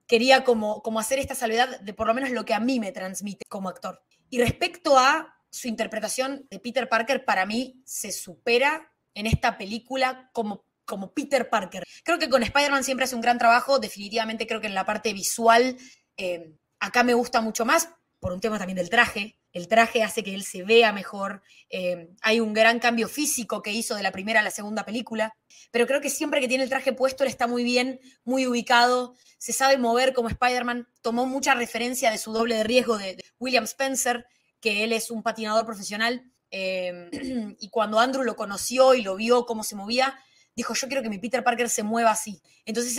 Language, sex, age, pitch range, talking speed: Spanish, female, 20-39, 220-260 Hz, 210 wpm